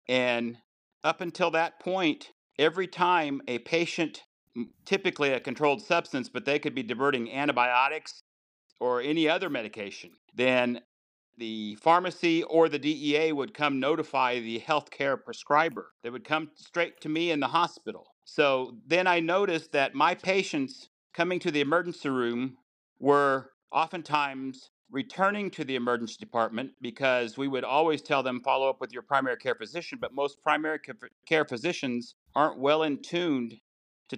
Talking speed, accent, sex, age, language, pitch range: 150 wpm, American, male, 50-69, English, 125-165 Hz